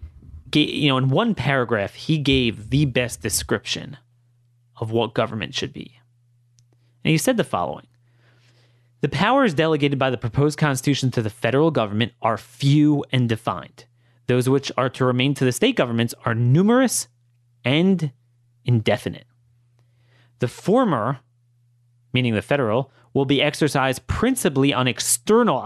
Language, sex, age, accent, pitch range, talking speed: English, male, 30-49, American, 120-145 Hz, 140 wpm